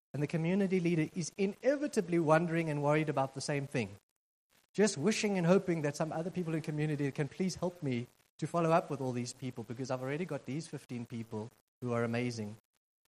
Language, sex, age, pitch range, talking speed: English, male, 30-49, 125-170 Hz, 200 wpm